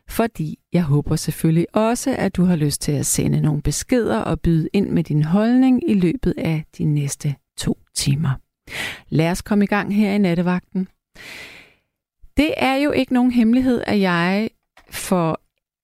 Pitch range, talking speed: 170-235 Hz, 165 wpm